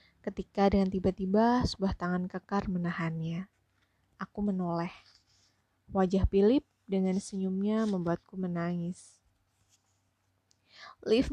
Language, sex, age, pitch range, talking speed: Indonesian, female, 20-39, 165-205 Hz, 85 wpm